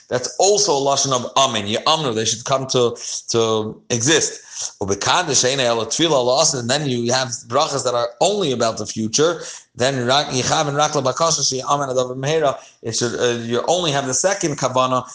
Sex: male